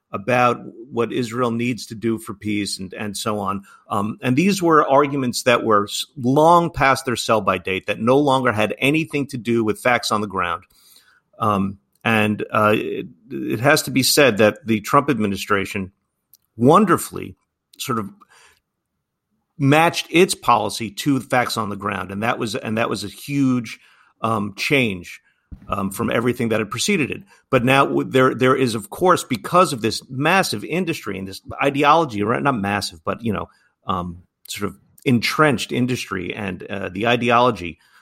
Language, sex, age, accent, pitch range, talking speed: English, male, 50-69, American, 105-130 Hz, 170 wpm